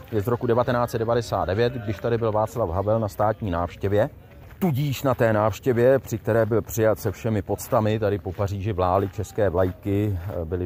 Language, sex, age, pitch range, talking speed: Czech, male, 30-49, 95-115 Hz, 170 wpm